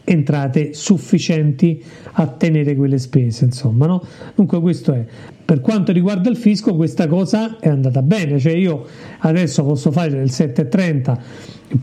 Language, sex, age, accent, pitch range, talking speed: Italian, male, 50-69, native, 145-185 Hz, 140 wpm